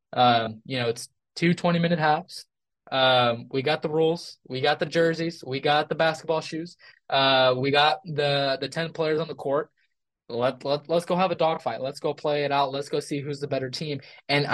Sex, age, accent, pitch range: male, 20-39, American, 130-155 Hz